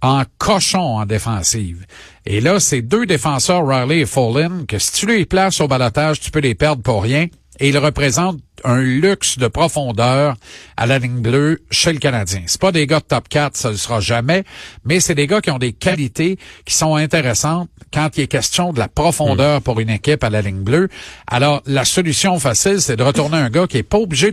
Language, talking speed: French, 225 wpm